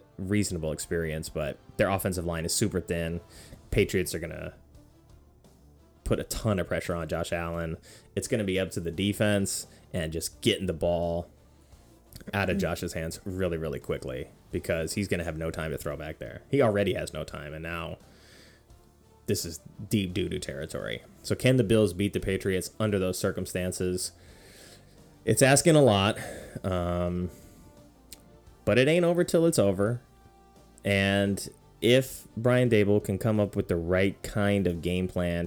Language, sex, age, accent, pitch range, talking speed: English, male, 20-39, American, 85-105 Hz, 165 wpm